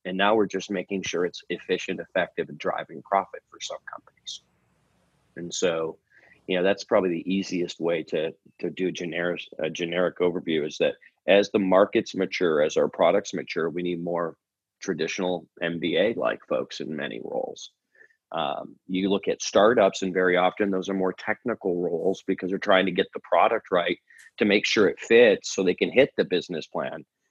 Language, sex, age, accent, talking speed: English, male, 40-59, American, 180 wpm